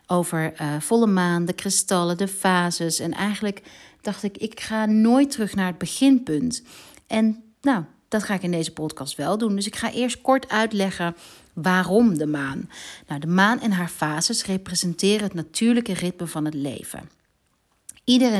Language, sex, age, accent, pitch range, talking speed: Dutch, female, 40-59, Dutch, 175-220 Hz, 165 wpm